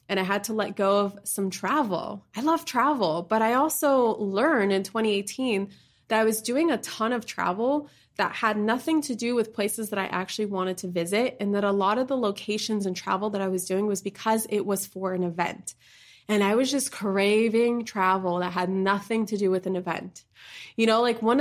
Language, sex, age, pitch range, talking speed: English, female, 20-39, 190-230 Hz, 215 wpm